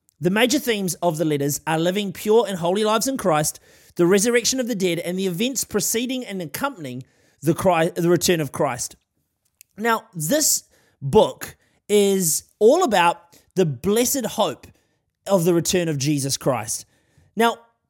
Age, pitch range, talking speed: 30-49, 150-215 Hz, 150 wpm